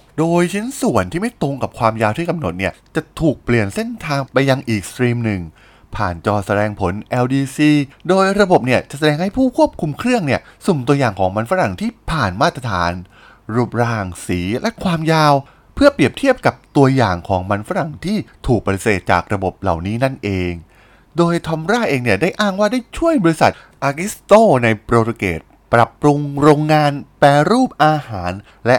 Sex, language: male, Thai